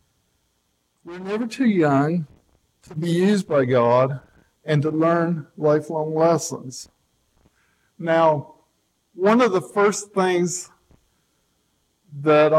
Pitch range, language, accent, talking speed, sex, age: 130-165 Hz, English, American, 100 wpm, male, 50-69